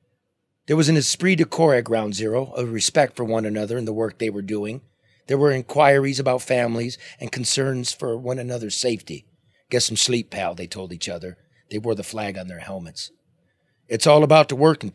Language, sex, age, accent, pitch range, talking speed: English, male, 40-59, American, 110-135 Hz, 205 wpm